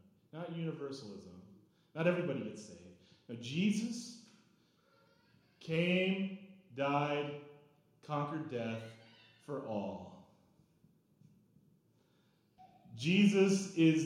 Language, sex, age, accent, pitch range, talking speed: English, male, 30-49, American, 180-290 Hz, 70 wpm